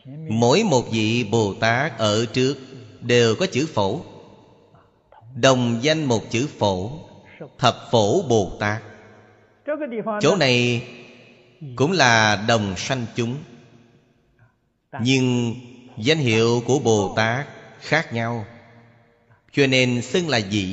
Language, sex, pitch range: Vietnamese, male, 110-125 Hz